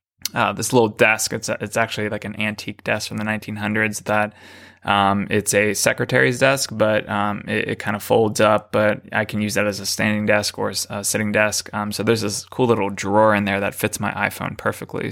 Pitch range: 100-110 Hz